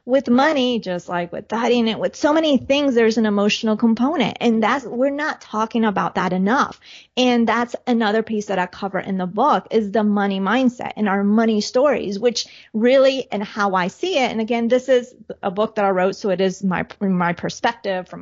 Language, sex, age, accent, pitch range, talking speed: English, female, 30-49, American, 190-245 Hz, 210 wpm